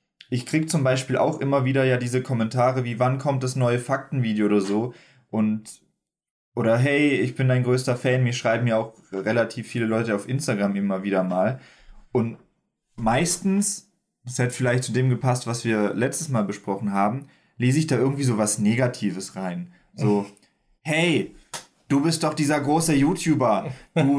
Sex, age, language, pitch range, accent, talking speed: male, 20-39, German, 110-145 Hz, German, 170 wpm